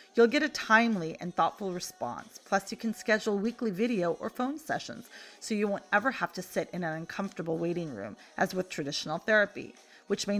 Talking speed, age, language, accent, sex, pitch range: 195 wpm, 30-49, English, American, female, 170-235 Hz